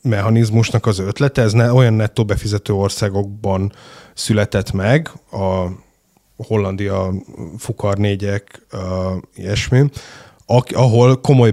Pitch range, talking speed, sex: 95-115 Hz, 100 wpm, male